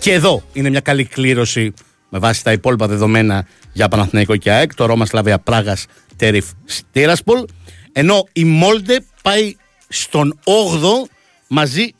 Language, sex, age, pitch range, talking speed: Greek, male, 50-69, 115-190 Hz, 140 wpm